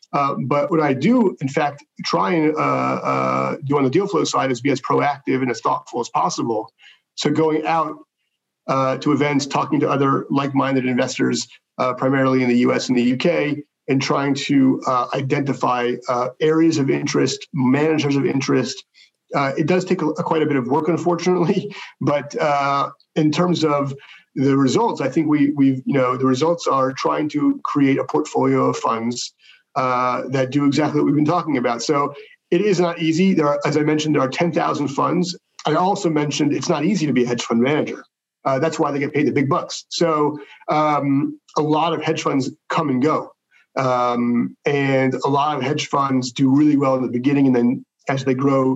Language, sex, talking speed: English, male, 200 wpm